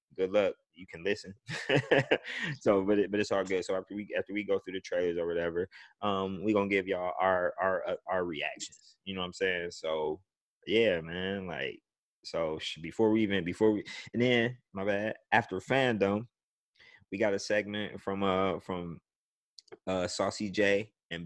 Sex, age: male, 20-39